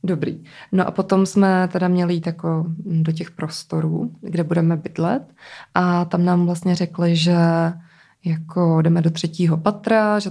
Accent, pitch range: native, 165-190 Hz